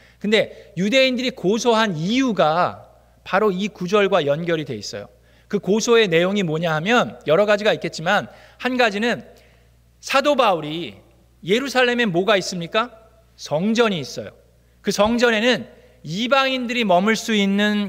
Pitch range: 170-245 Hz